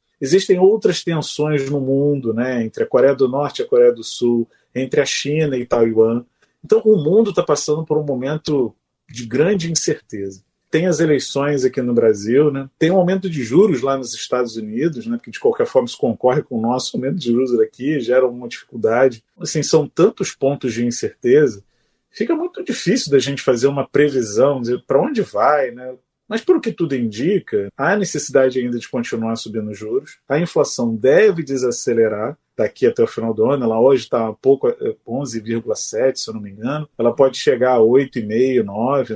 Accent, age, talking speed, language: Brazilian, 30-49, 190 wpm, Portuguese